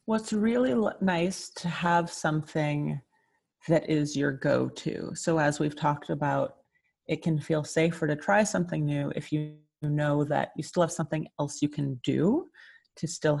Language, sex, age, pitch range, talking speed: English, female, 30-49, 145-170 Hz, 170 wpm